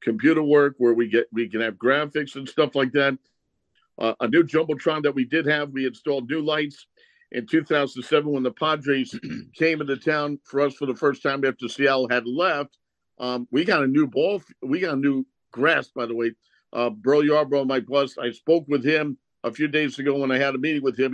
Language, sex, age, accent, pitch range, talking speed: English, male, 50-69, American, 130-160 Hz, 215 wpm